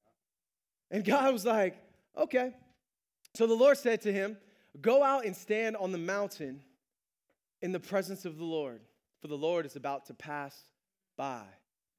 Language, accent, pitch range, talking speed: English, American, 150-230 Hz, 160 wpm